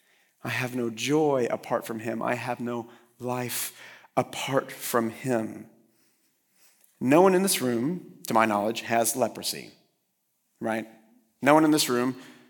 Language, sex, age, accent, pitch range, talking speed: English, male, 40-59, American, 110-130 Hz, 145 wpm